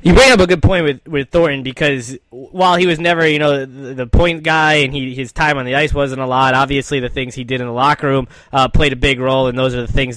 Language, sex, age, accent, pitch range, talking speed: English, male, 10-29, American, 135-155 Hz, 290 wpm